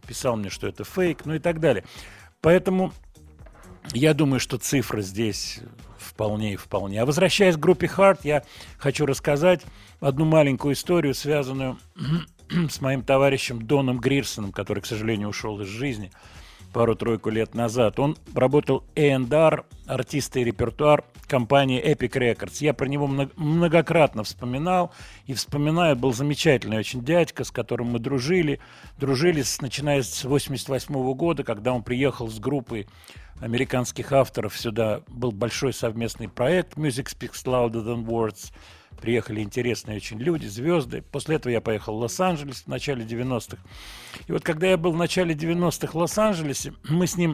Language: Russian